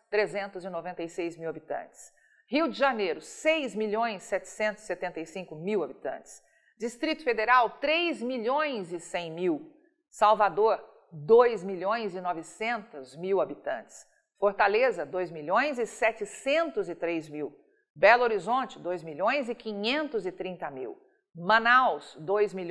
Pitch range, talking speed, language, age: 195-280 Hz, 60 wpm, Portuguese, 50-69